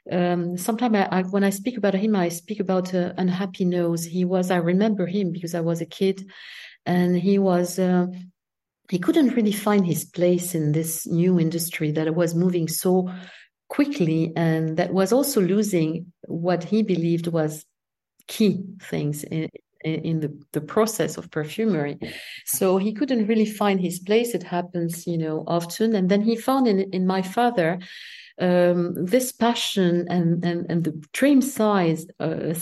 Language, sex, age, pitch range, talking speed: English, female, 50-69, 170-210 Hz, 170 wpm